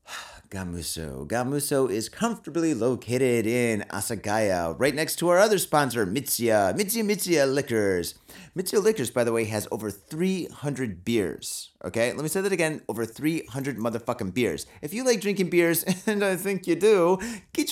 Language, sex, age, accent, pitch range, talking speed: English, male, 30-49, American, 115-170 Hz, 160 wpm